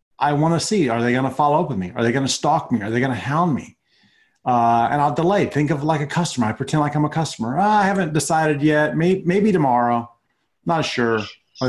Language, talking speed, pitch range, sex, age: English, 255 wpm, 120-160 Hz, male, 30-49